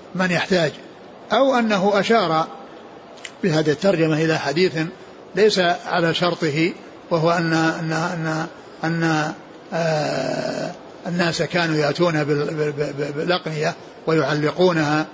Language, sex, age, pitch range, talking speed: Arabic, male, 60-79, 155-185 Hz, 85 wpm